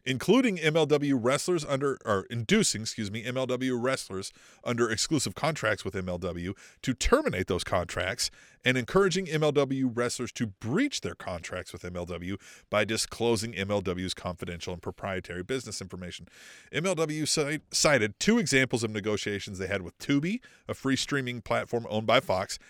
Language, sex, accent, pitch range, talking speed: English, male, American, 100-155 Hz, 145 wpm